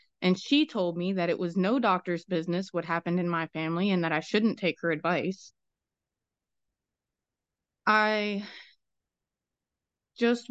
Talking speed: 135 wpm